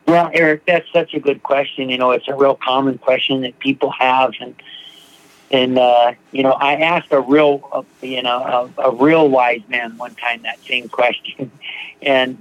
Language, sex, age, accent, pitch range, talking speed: English, male, 50-69, American, 120-140 Hz, 195 wpm